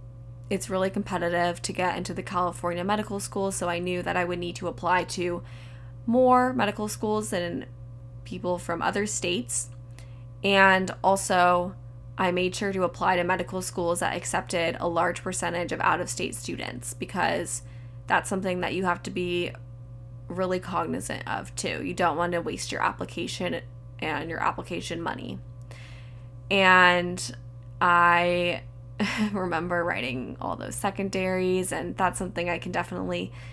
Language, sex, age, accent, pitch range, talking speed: English, female, 10-29, American, 120-180 Hz, 150 wpm